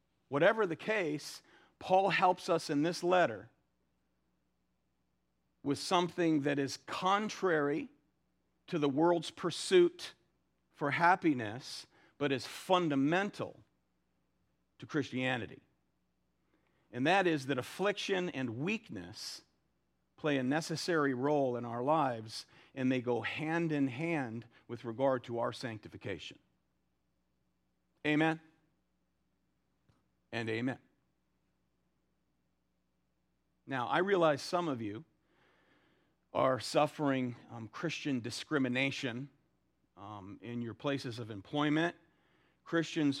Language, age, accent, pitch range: English, 50-69, American, 115-155 Hz